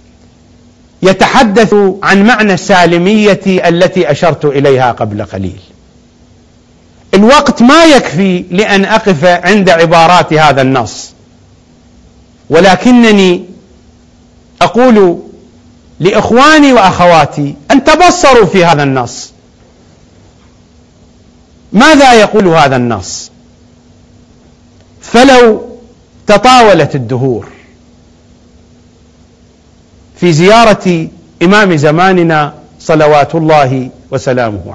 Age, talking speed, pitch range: 50-69, 70 wpm, 125-205 Hz